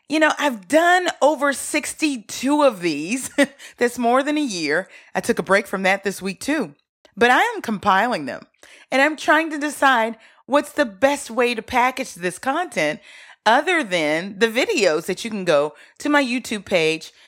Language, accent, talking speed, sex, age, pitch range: English, American, 180 wpm, female, 30-49, 190-285 Hz